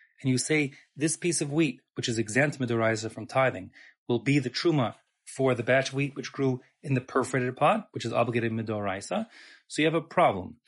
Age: 30-49